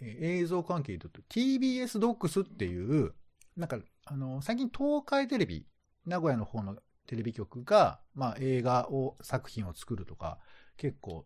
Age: 40-59